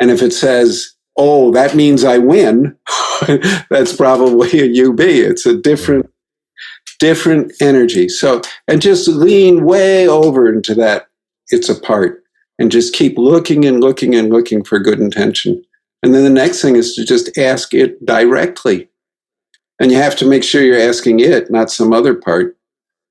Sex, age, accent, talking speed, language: male, 50-69, American, 165 wpm, English